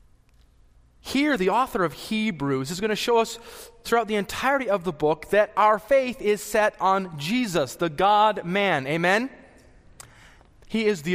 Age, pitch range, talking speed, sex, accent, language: 30-49, 175-240 Hz, 155 wpm, male, American, English